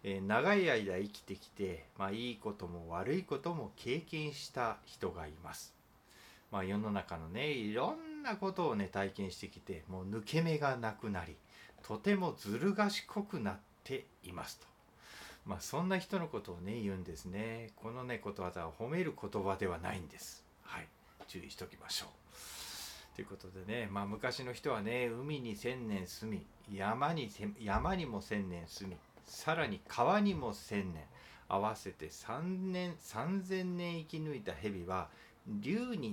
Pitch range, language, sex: 95-145 Hz, Japanese, male